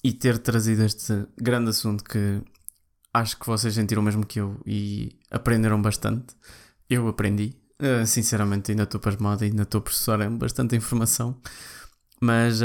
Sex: male